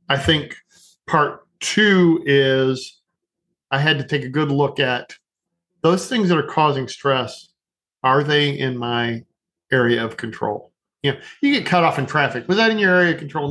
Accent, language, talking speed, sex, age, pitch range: American, English, 180 wpm, male, 40-59, 140-180 Hz